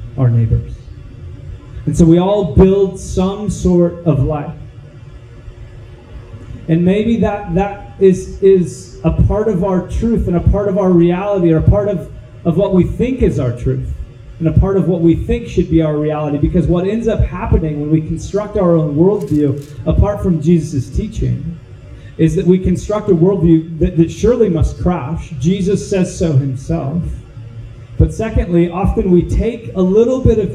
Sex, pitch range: male, 145-195 Hz